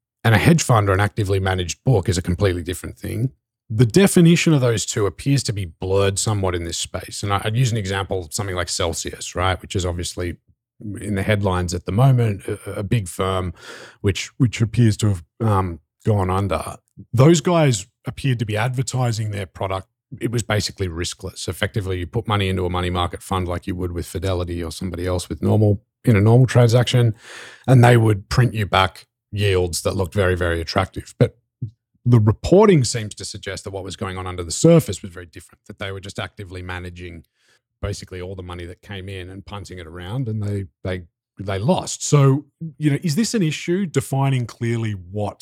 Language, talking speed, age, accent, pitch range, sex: English, 200 wpm, 30-49, Australian, 95-120 Hz, male